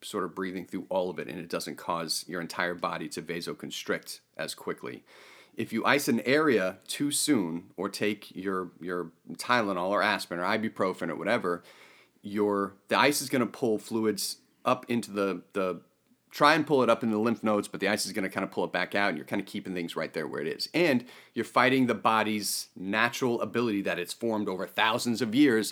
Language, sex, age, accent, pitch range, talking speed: English, male, 40-59, American, 90-110 Hz, 215 wpm